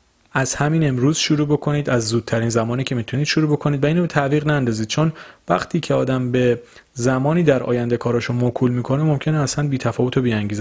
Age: 30-49